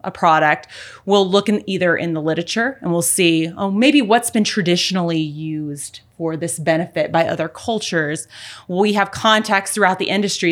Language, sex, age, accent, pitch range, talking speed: English, female, 30-49, American, 165-205 Hz, 170 wpm